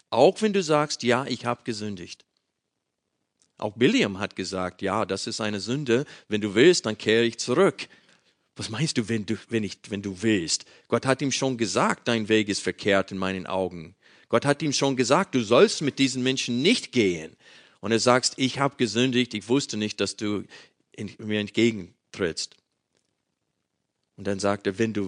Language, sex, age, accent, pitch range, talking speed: German, male, 40-59, German, 95-125 Hz, 175 wpm